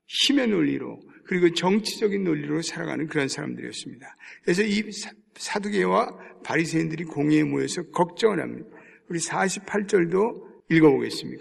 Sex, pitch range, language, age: male, 155-210 Hz, Korean, 60-79